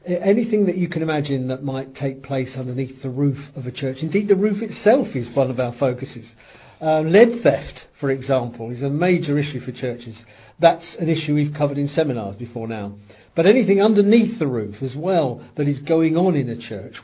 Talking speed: 205 wpm